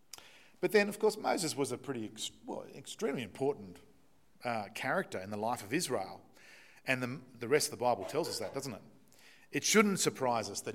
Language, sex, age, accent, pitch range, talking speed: English, male, 40-59, Australian, 110-150 Hz, 195 wpm